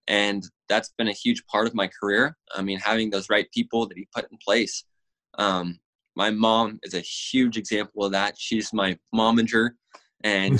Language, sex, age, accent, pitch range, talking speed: English, male, 20-39, American, 100-120 Hz, 185 wpm